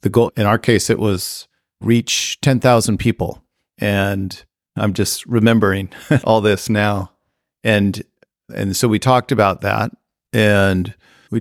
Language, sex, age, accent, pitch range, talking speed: English, male, 50-69, American, 95-115 Hz, 135 wpm